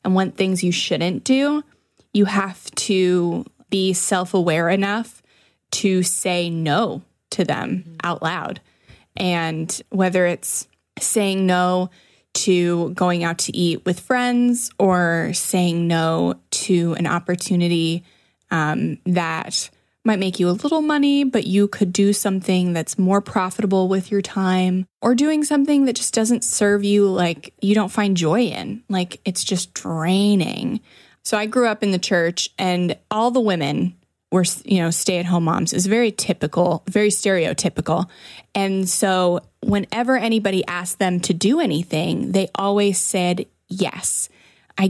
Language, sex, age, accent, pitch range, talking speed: English, female, 20-39, American, 175-210 Hz, 150 wpm